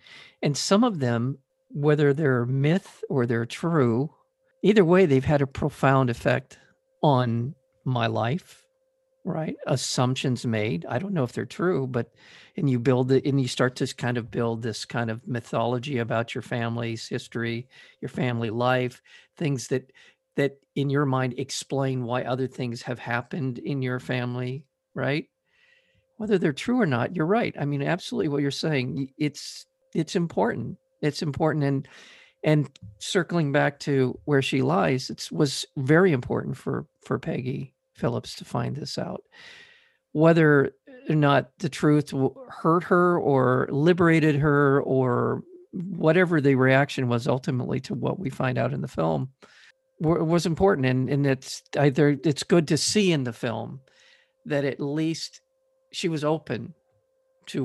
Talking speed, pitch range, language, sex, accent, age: 155 wpm, 125-175 Hz, English, male, American, 50-69